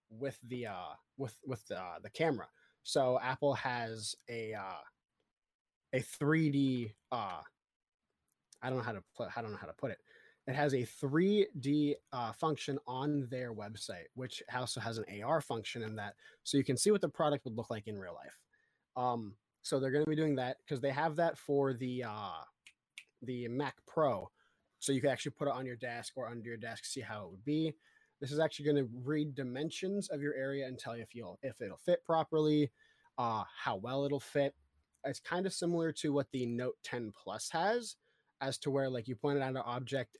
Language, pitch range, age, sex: English, 120-150 Hz, 20-39, male